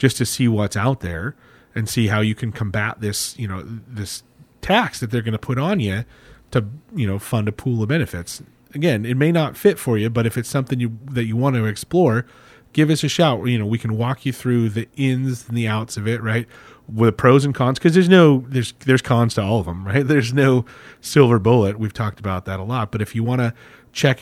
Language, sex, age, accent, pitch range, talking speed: English, male, 30-49, American, 110-135 Hz, 250 wpm